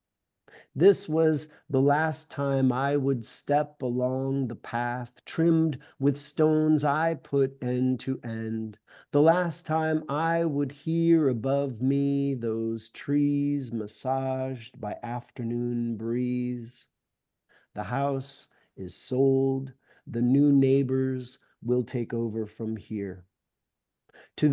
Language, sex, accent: English, male, American